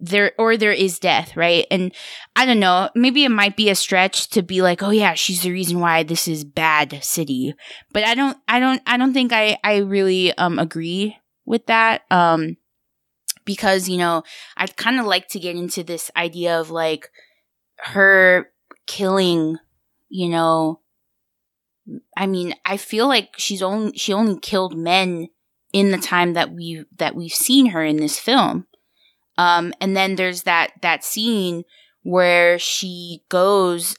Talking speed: 170 wpm